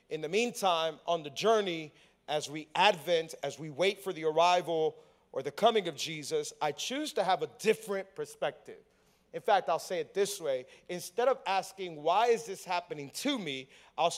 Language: English